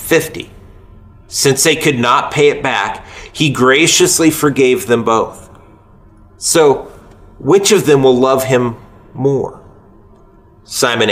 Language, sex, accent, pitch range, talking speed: English, male, American, 100-130 Hz, 120 wpm